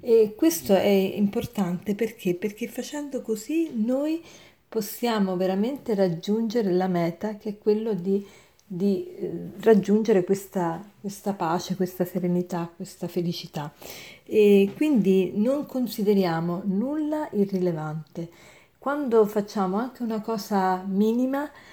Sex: female